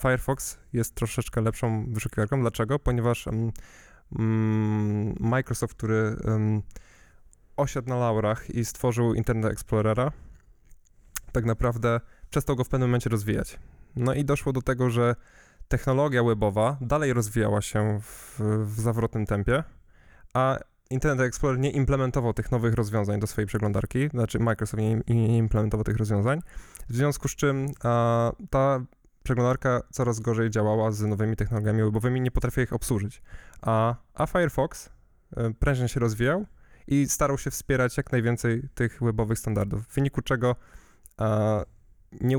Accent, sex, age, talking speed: native, male, 10-29, 135 wpm